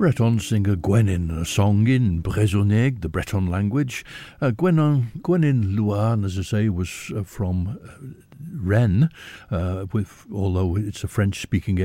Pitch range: 95-120 Hz